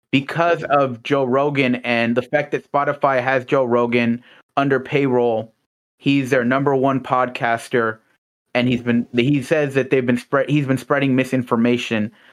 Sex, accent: male, American